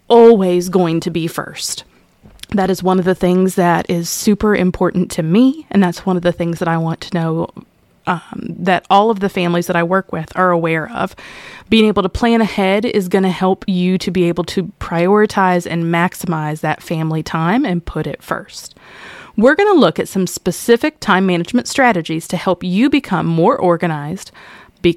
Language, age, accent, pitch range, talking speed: English, 20-39, American, 175-215 Hz, 195 wpm